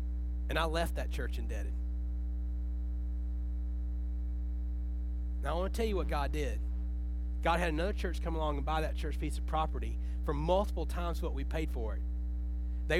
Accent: American